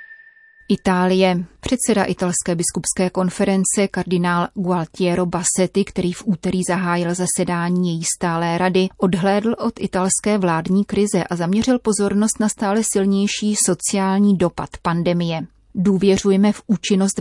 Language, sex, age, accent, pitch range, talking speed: Czech, female, 30-49, native, 175-210 Hz, 115 wpm